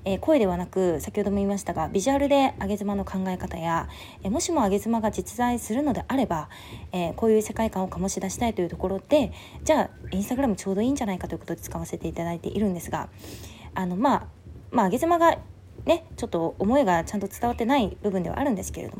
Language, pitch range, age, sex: Japanese, 175-265 Hz, 20-39, female